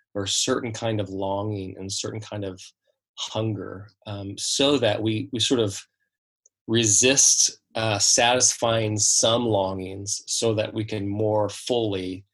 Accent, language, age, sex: American, English, 20-39, male